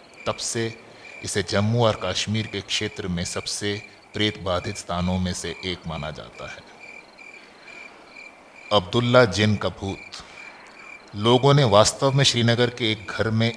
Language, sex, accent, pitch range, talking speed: Hindi, male, native, 95-110 Hz, 135 wpm